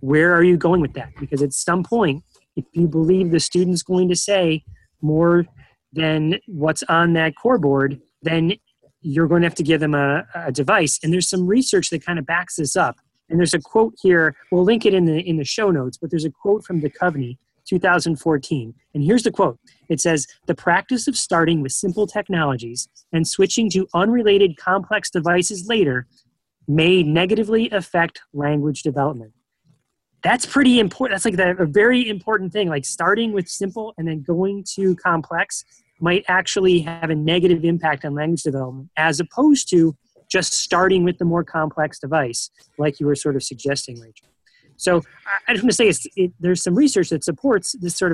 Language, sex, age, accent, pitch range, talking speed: English, male, 30-49, American, 150-185 Hz, 190 wpm